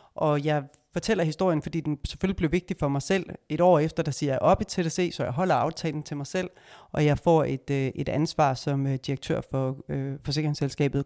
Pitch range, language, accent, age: 135-165 Hz, Danish, native, 30-49